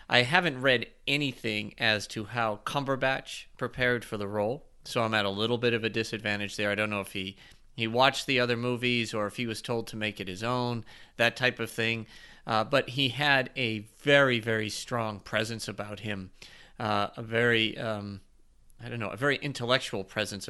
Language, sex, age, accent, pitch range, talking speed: English, male, 40-59, American, 105-125 Hz, 200 wpm